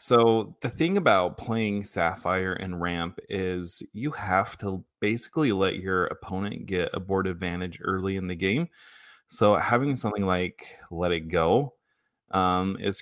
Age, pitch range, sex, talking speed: 20-39, 90-100 Hz, male, 150 wpm